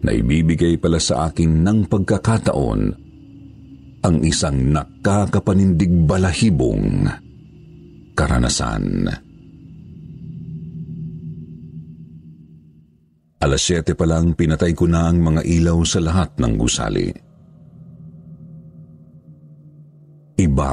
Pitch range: 80-105 Hz